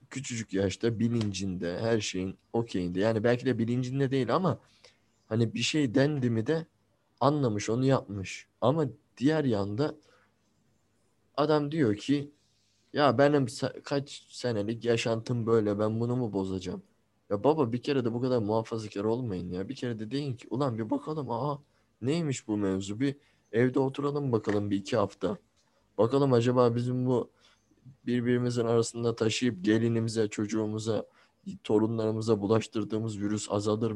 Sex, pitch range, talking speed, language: male, 105-135 Hz, 140 wpm, Turkish